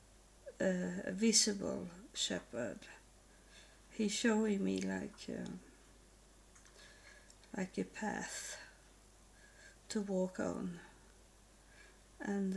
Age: 40-59